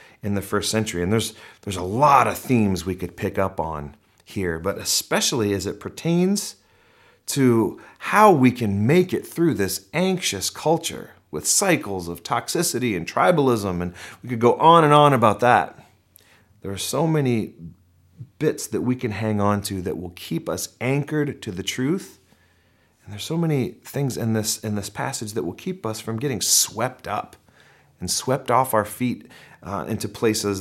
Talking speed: 180 wpm